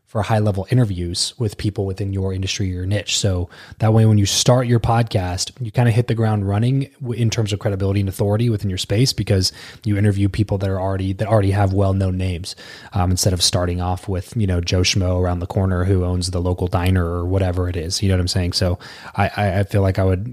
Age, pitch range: 20-39, 95-110 Hz